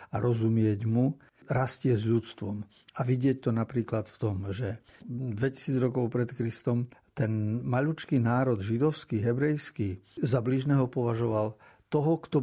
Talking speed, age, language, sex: 130 wpm, 60-79, Slovak, male